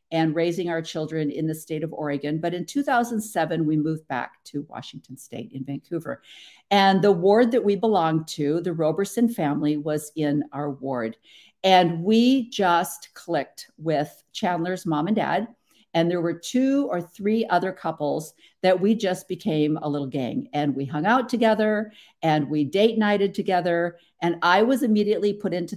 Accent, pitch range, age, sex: American, 155-195 Hz, 50-69, female